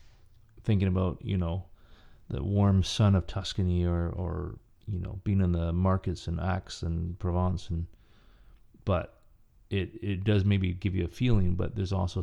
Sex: male